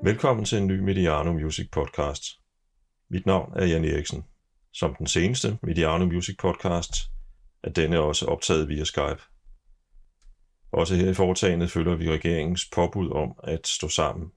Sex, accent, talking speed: male, native, 150 wpm